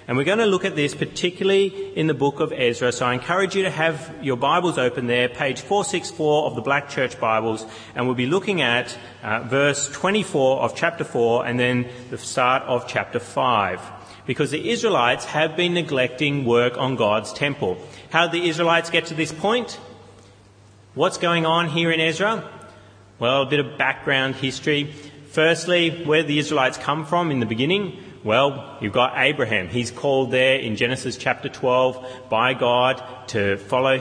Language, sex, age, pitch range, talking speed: English, male, 30-49, 120-155 Hz, 180 wpm